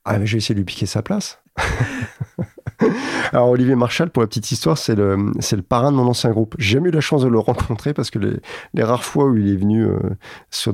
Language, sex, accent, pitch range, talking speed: French, male, French, 105-120 Hz, 250 wpm